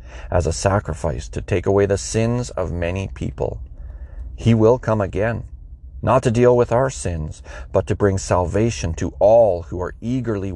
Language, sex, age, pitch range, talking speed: English, male, 30-49, 70-100 Hz, 170 wpm